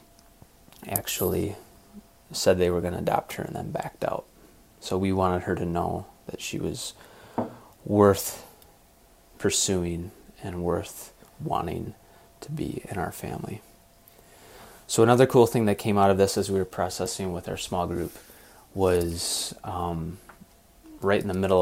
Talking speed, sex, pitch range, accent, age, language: 150 wpm, male, 85-100 Hz, American, 20-39, English